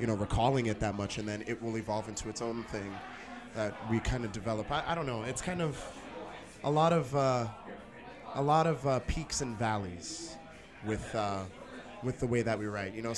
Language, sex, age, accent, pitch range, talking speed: English, male, 20-39, American, 110-140 Hz, 220 wpm